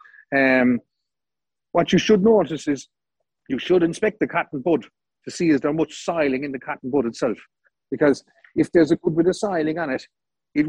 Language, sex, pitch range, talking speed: English, male, 145-185 Hz, 190 wpm